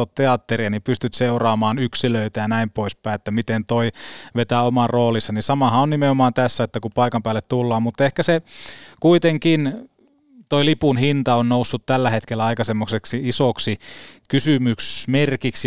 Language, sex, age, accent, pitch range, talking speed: Finnish, male, 20-39, native, 110-135 Hz, 140 wpm